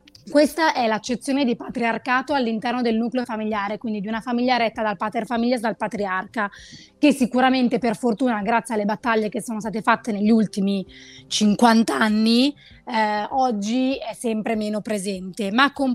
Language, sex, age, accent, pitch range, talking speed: Italian, female, 20-39, native, 215-250 Hz, 160 wpm